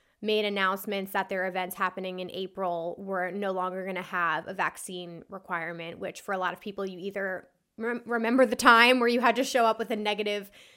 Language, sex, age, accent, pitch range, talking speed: English, female, 20-39, American, 190-220 Hz, 205 wpm